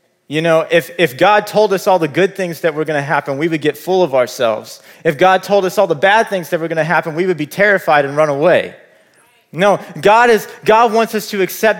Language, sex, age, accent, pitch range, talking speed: English, male, 30-49, American, 160-210 Hz, 255 wpm